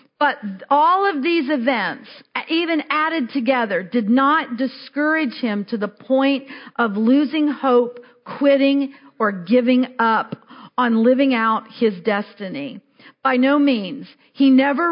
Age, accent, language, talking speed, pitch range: 50-69, American, Polish, 130 wpm, 230-280 Hz